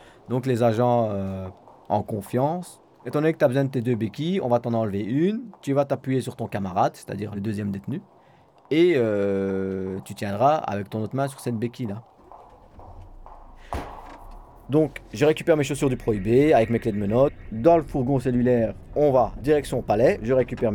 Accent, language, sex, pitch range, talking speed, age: French, French, male, 100-135 Hz, 180 wpm, 40-59